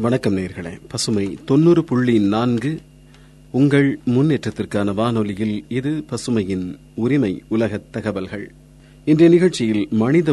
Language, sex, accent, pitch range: Tamil, male, native, 100-130 Hz